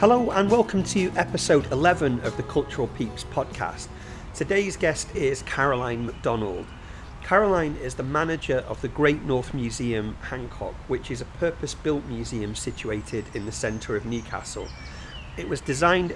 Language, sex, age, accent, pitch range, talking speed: English, male, 40-59, British, 115-150 Hz, 150 wpm